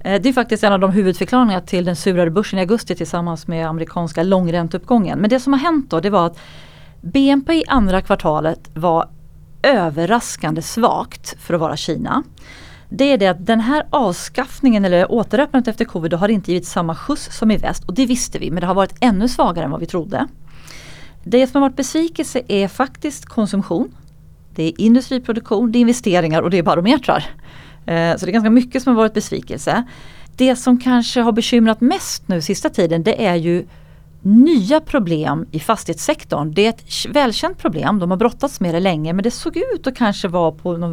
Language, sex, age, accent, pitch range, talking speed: Swedish, female, 30-49, native, 175-245 Hz, 195 wpm